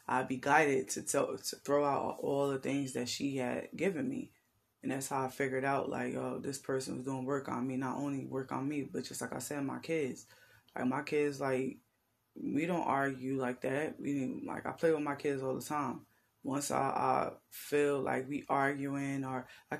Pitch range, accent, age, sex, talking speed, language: 135-150 Hz, American, 20-39, female, 215 wpm, English